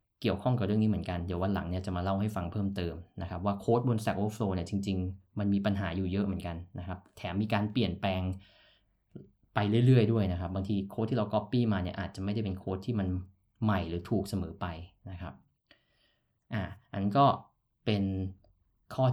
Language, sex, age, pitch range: Thai, male, 20-39, 95-115 Hz